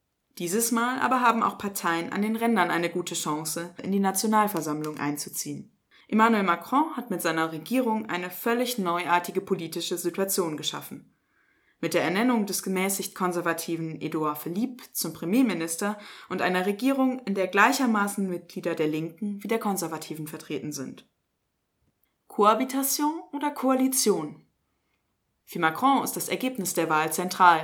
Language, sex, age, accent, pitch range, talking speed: German, female, 20-39, German, 165-220 Hz, 135 wpm